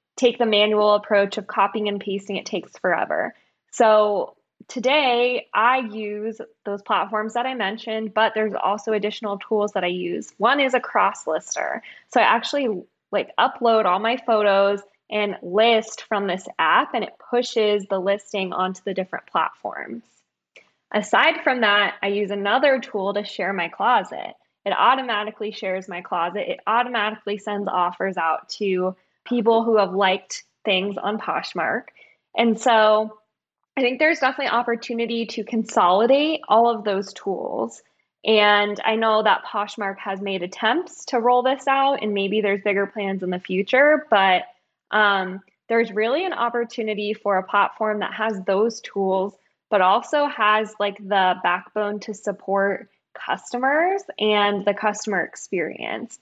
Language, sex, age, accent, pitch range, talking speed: English, female, 20-39, American, 200-235 Hz, 150 wpm